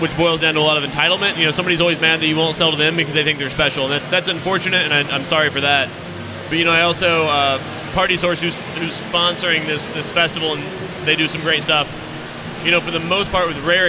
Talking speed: 265 wpm